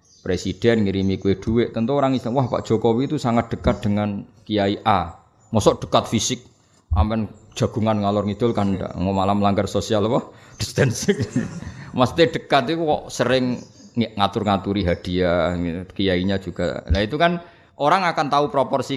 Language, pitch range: Indonesian, 90-115 Hz